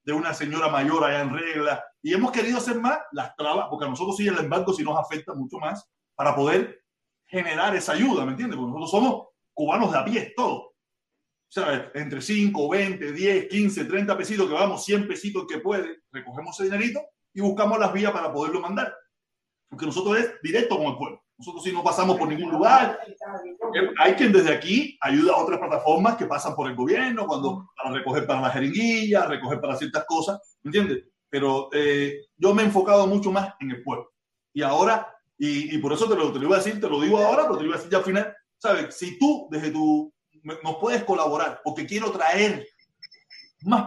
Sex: male